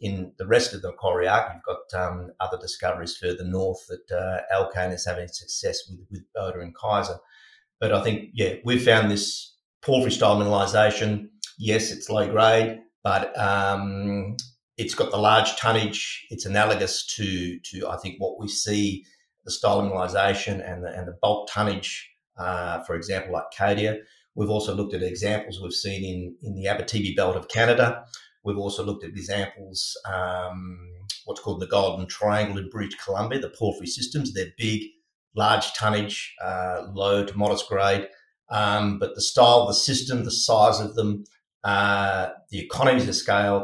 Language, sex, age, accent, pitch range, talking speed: English, male, 40-59, Australian, 95-110 Hz, 170 wpm